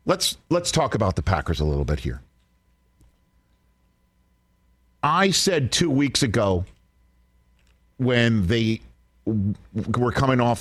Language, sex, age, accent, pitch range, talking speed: English, male, 50-69, American, 80-130 Hz, 115 wpm